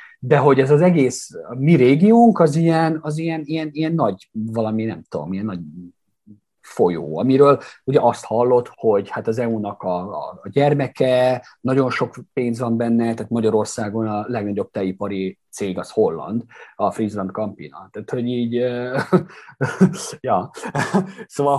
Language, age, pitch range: Hungarian, 30-49, 115-160 Hz